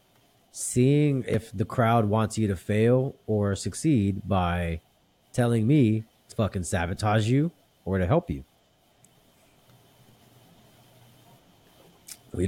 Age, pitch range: 30-49, 95-125 Hz